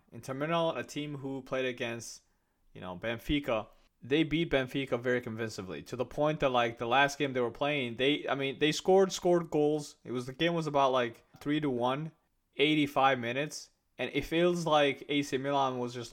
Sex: male